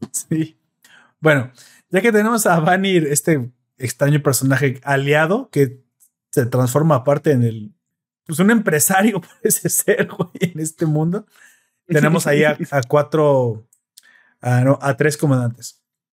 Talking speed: 135 wpm